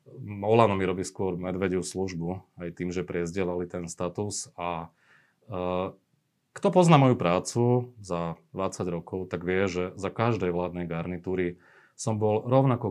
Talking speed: 145 wpm